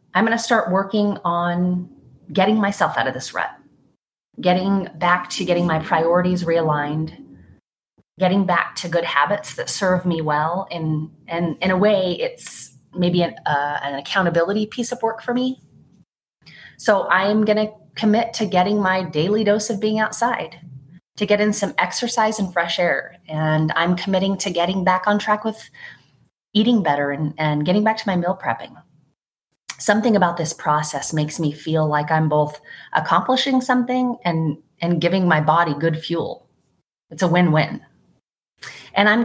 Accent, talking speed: American, 165 wpm